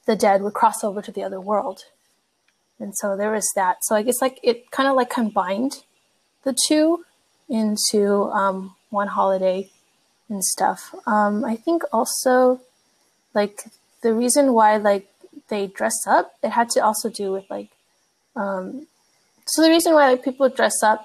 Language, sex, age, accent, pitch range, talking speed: English, female, 20-39, American, 200-250 Hz, 170 wpm